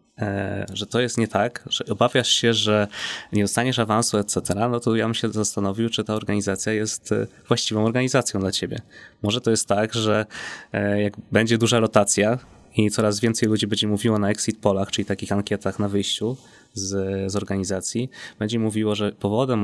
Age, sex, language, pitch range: 20-39, male, Polish, 100-115 Hz